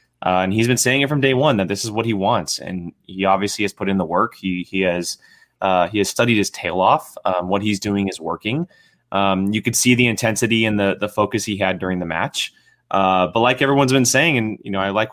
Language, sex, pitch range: English, male, 105-135 Hz